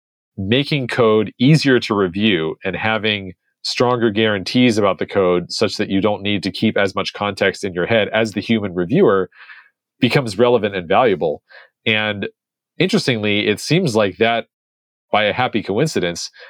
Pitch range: 95-120 Hz